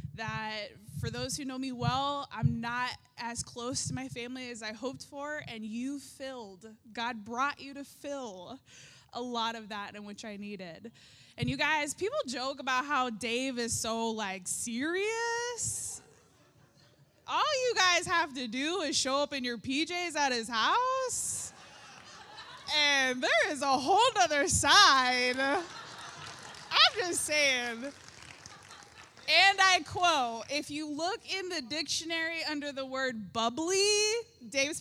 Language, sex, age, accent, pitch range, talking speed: English, female, 20-39, American, 240-315 Hz, 145 wpm